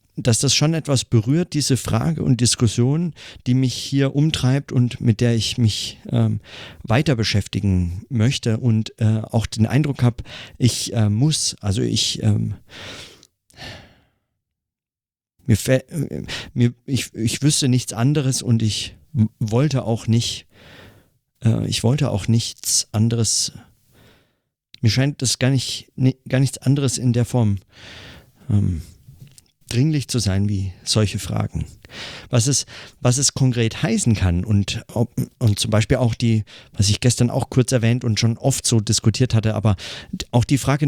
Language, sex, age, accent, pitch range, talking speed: German, male, 50-69, German, 110-130 Hz, 150 wpm